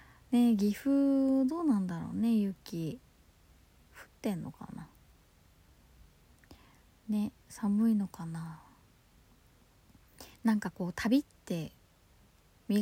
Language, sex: Japanese, female